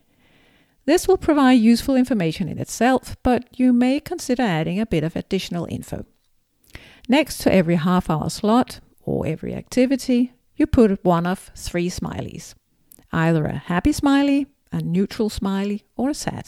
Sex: female